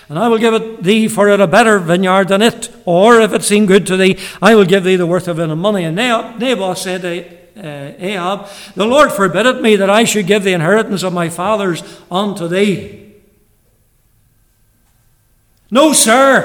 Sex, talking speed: male, 195 wpm